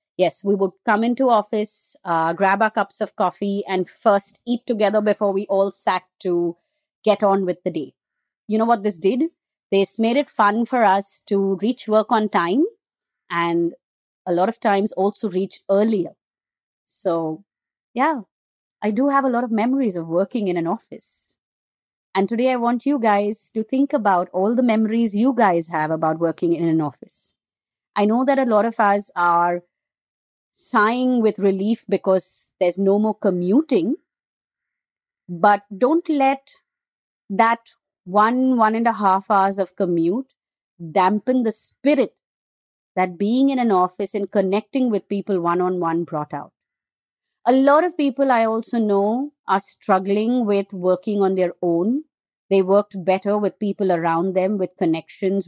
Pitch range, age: 185-230 Hz, 30-49